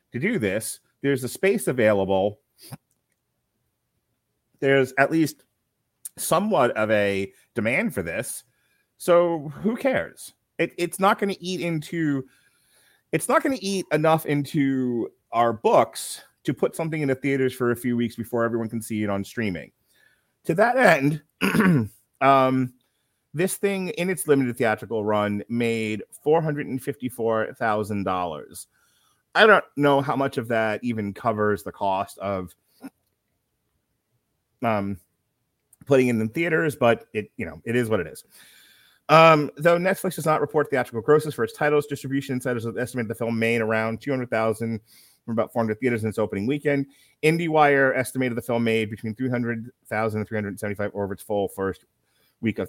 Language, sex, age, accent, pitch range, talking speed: English, male, 30-49, American, 110-150 Hz, 160 wpm